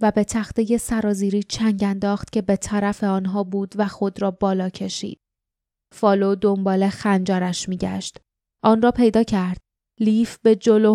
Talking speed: 150 wpm